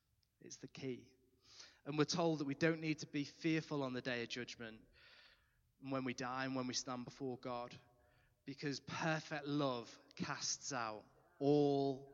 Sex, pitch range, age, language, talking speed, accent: male, 130-170 Hz, 20-39, English, 165 wpm, British